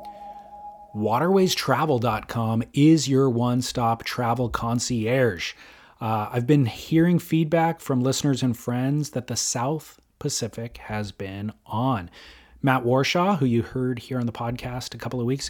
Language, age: English, 30-49